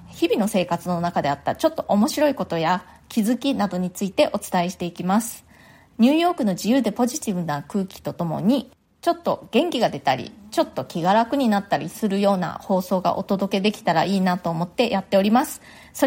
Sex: female